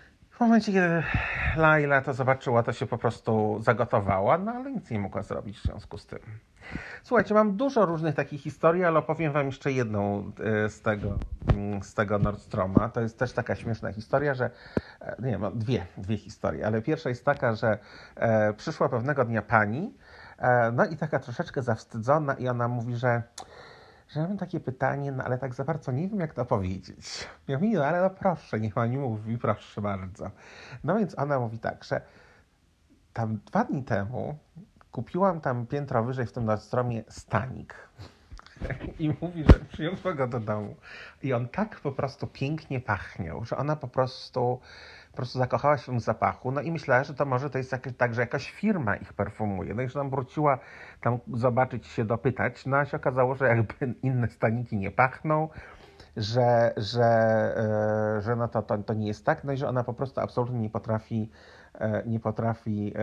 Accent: native